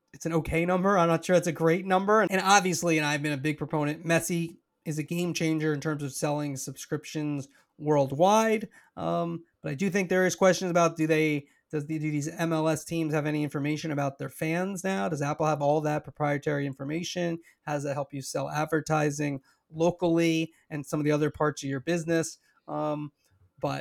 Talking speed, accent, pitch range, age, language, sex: 200 wpm, American, 150-180 Hz, 30-49, English, male